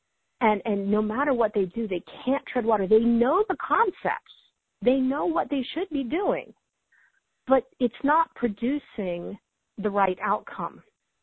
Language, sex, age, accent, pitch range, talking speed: English, female, 40-59, American, 190-245 Hz, 155 wpm